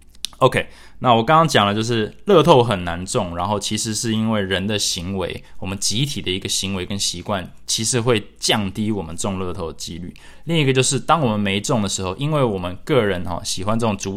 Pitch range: 95-130 Hz